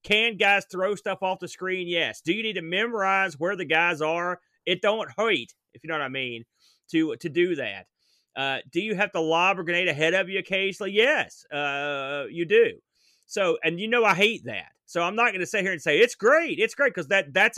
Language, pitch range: English, 165-205 Hz